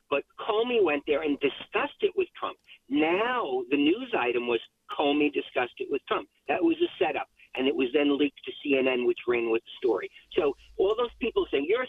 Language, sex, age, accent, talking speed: English, male, 50-69, American, 205 wpm